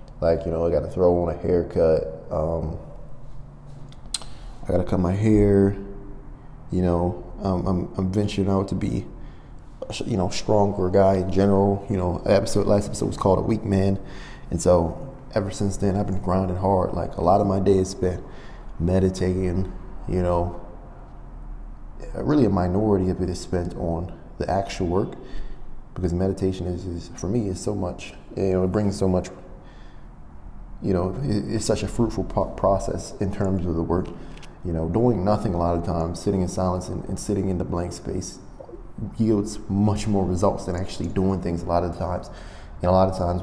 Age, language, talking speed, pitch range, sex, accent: 20-39, English, 185 wpm, 85-100 Hz, male, American